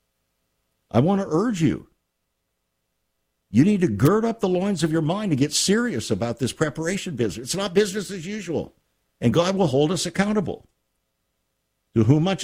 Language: English